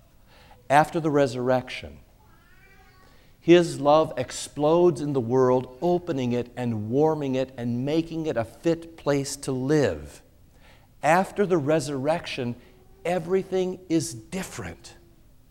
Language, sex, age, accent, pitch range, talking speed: English, male, 50-69, American, 140-200 Hz, 110 wpm